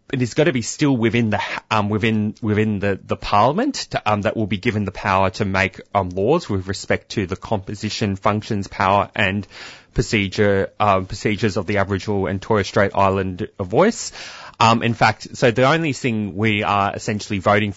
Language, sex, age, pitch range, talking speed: English, male, 20-39, 105-125 Hz, 190 wpm